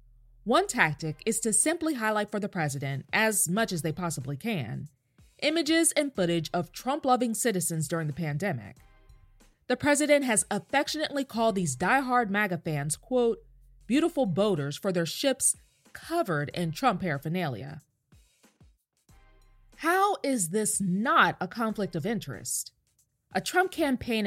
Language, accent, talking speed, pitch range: English, American, 135 wpm, 155-250 Hz